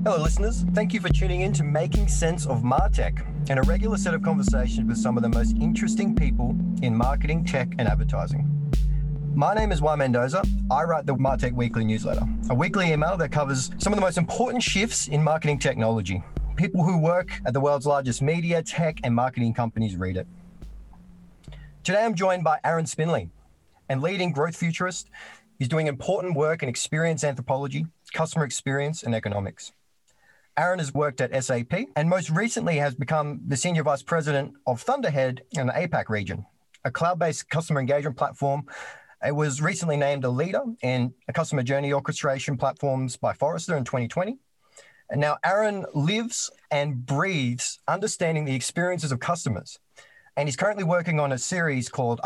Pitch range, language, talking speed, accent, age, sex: 130-175 Hz, English, 170 wpm, Australian, 30-49, male